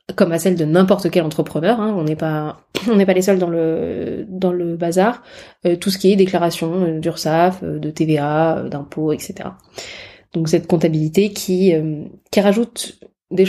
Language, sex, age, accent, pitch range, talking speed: French, female, 20-39, French, 170-205 Hz, 180 wpm